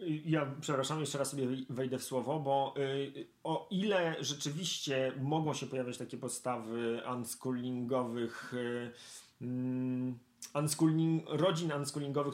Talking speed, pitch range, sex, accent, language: 95 wpm, 125-145 Hz, male, native, Polish